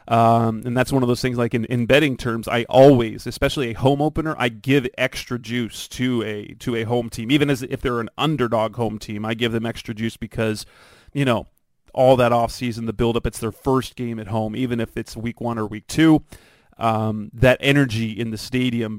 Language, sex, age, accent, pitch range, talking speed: English, male, 30-49, American, 110-130 Hz, 220 wpm